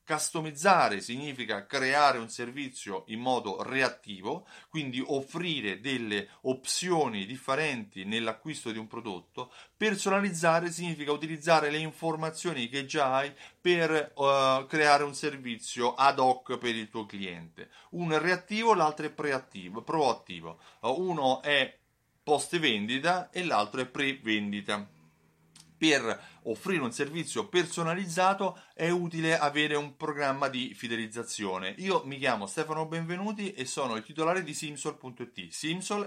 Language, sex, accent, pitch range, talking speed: Italian, male, native, 120-165 Hz, 125 wpm